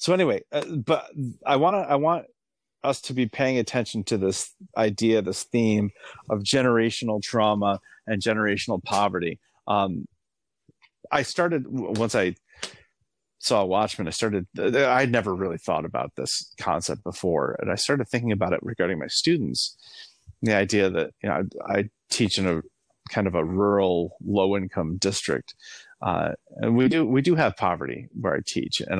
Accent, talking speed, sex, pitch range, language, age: American, 160 wpm, male, 100-125 Hz, English, 30-49